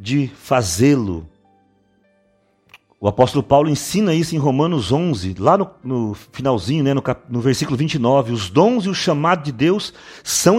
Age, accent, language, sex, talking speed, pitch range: 40-59, Brazilian, Portuguese, male, 155 wpm, 125-165 Hz